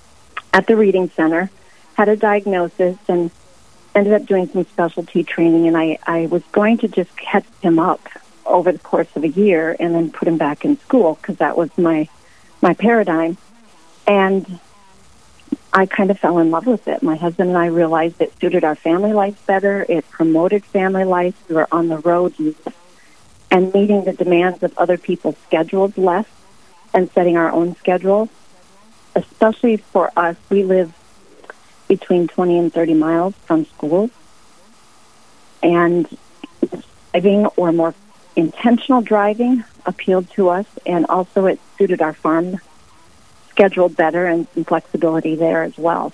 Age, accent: 40-59, American